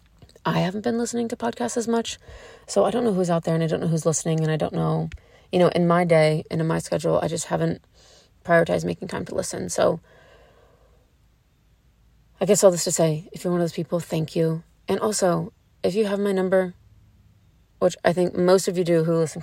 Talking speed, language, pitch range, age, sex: 225 wpm, English, 160-185 Hz, 30-49, female